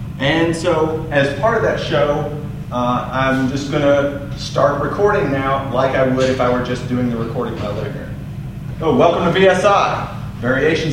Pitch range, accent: 130-155 Hz, American